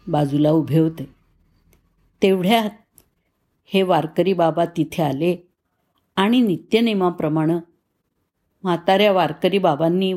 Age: 50-69